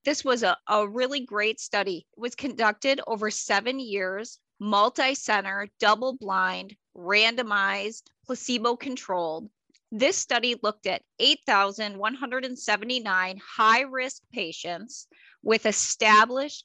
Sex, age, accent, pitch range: female, 30-49, American, 200-255 Hz